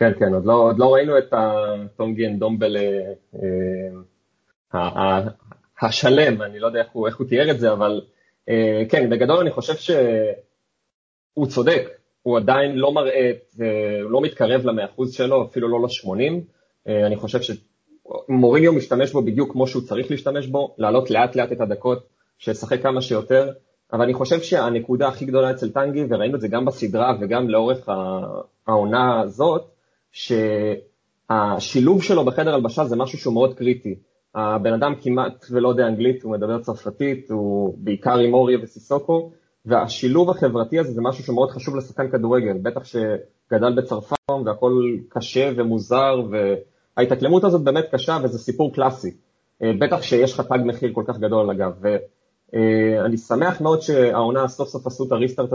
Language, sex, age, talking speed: Hebrew, male, 30-49, 145 wpm